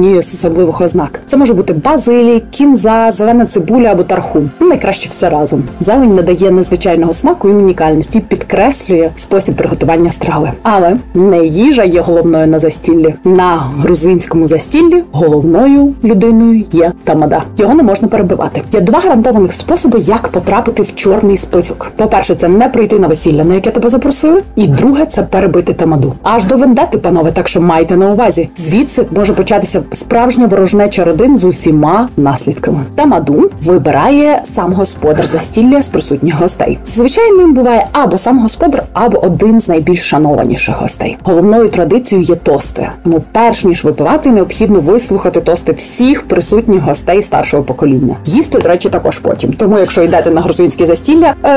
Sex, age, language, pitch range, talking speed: female, 20-39, Ukrainian, 170-235 Hz, 155 wpm